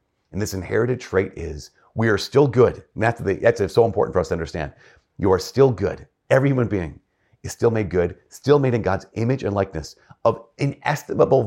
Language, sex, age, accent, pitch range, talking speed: English, male, 40-59, American, 90-120 Hz, 205 wpm